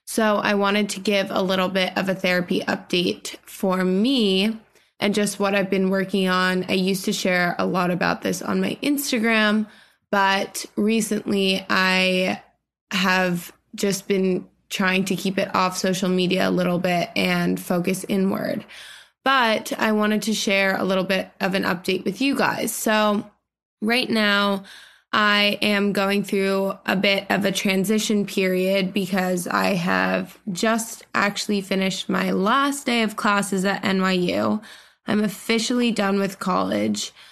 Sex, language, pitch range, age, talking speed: female, English, 190-210 Hz, 20-39, 155 wpm